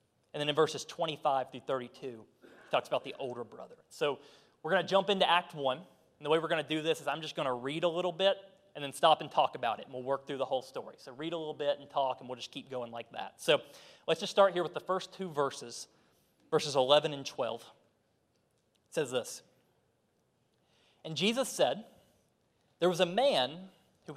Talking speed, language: 225 wpm, English